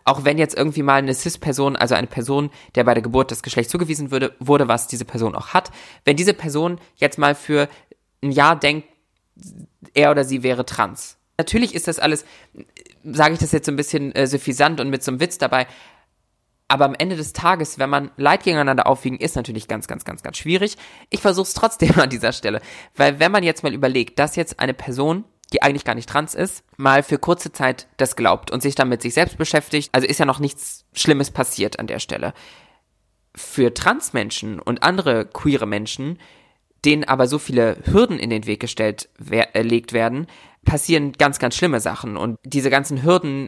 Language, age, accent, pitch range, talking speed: German, 20-39, German, 125-155 Hz, 205 wpm